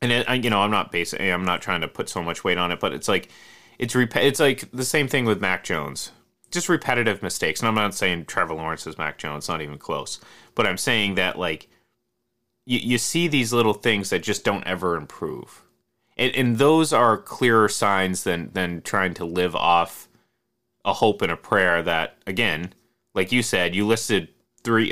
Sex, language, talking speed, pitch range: male, English, 205 wpm, 90-120 Hz